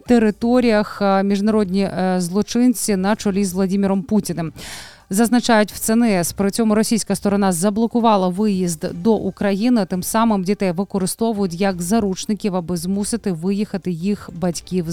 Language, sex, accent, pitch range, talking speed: Ukrainian, female, native, 190-220 Hz, 120 wpm